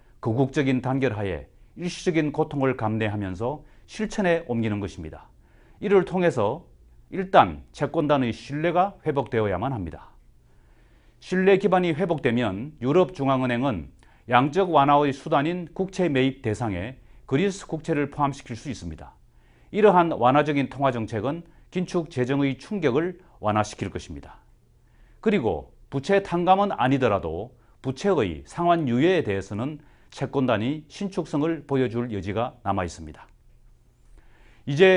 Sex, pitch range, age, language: male, 110-165 Hz, 30-49, Korean